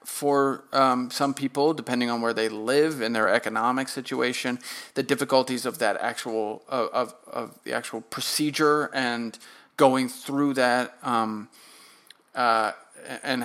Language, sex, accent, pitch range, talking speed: English, male, American, 115-140 Hz, 135 wpm